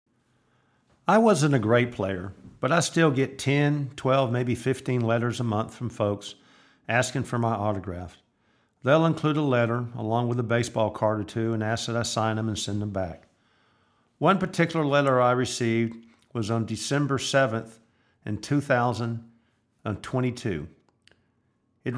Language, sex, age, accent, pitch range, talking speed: English, male, 50-69, American, 110-135 Hz, 150 wpm